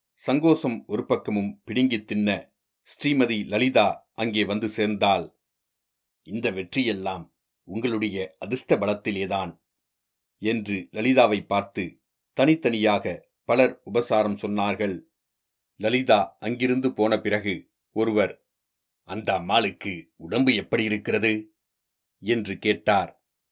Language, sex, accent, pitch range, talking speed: Tamil, male, native, 100-120 Hz, 85 wpm